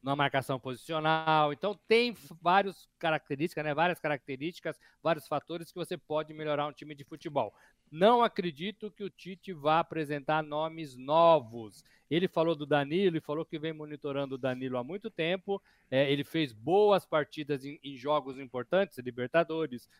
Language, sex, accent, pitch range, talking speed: Portuguese, male, Brazilian, 135-165 Hz, 155 wpm